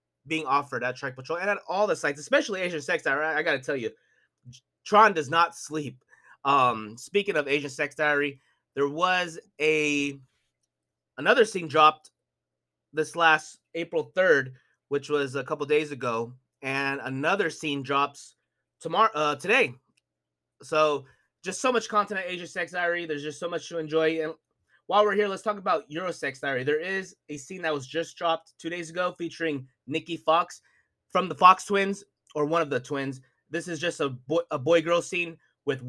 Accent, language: American, English